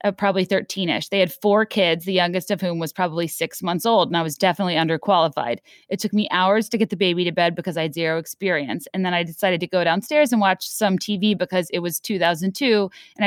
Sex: female